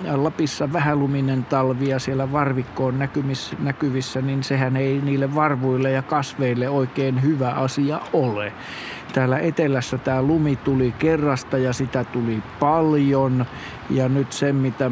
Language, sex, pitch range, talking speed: Finnish, male, 130-155 Hz, 130 wpm